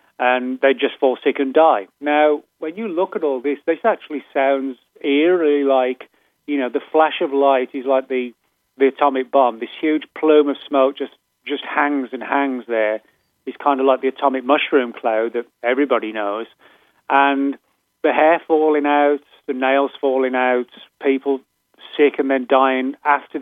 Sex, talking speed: male, 175 wpm